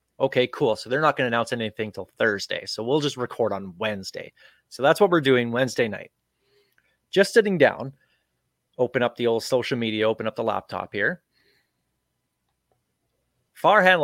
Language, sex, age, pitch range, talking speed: English, male, 30-49, 110-135 Hz, 165 wpm